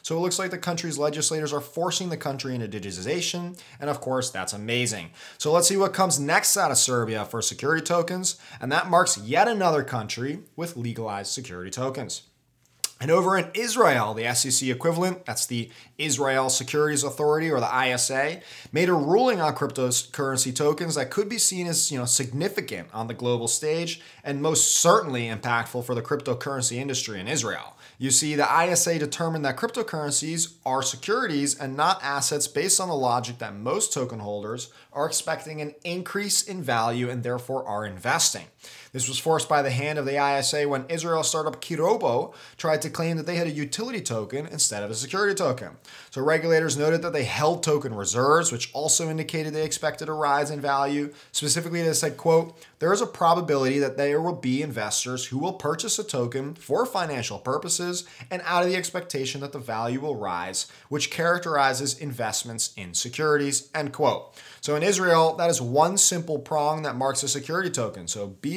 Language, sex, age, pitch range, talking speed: English, male, 20-39, 125-165 Hz, 185 wpm